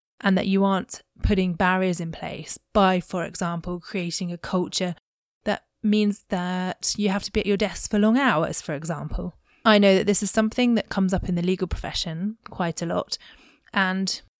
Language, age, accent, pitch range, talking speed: English, 20-39, British, 170-195 Hz, 190 wpm